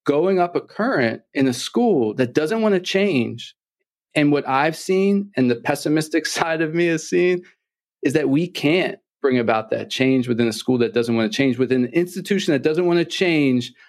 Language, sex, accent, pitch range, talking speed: English, male, American, 130-170 Hz, 205 wpm